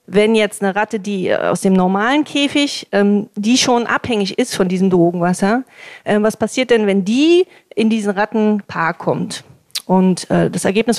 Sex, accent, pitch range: female, German, 195-235 Hz